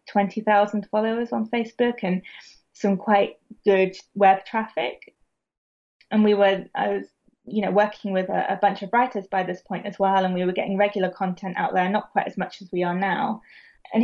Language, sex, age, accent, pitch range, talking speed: English, female, 20-39, British, 190-230 Hz, 195 wpm